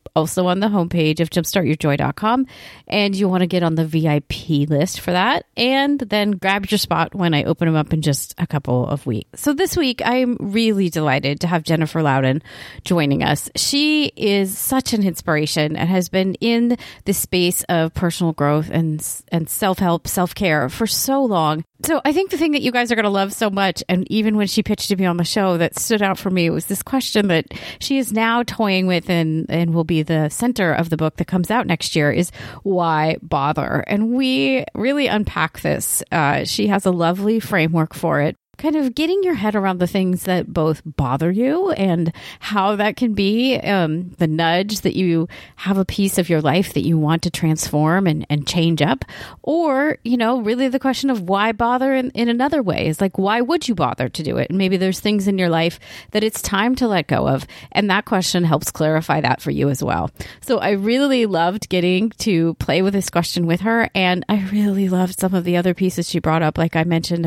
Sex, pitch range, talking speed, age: female, 165-220 Hz, 220 wpm, 30-49